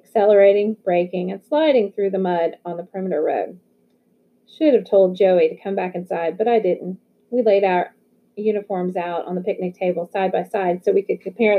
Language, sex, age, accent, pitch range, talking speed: English, female, 30-49, American, 185-220 Hz, 195 wpm